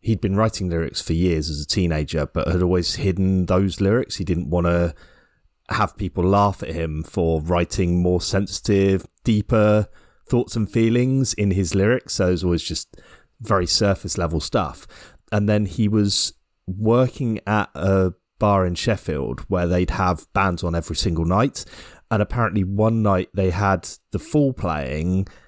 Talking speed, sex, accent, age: 165 wpm, male, British, 30-49